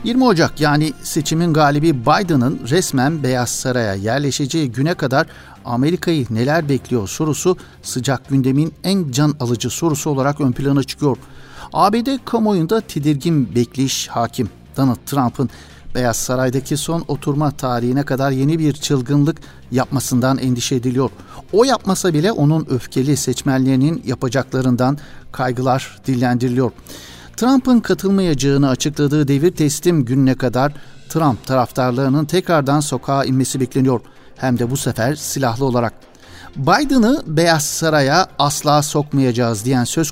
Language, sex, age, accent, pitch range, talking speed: Turkish, male, 60-79, native, 130-155 Hz, 120 wpm